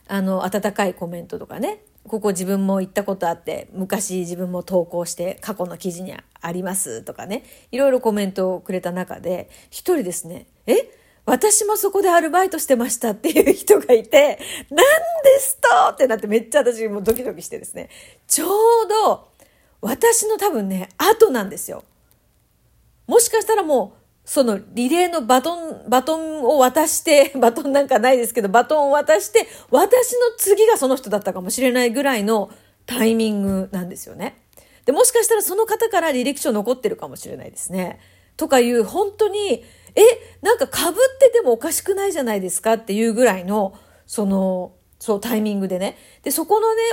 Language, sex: Japanese, female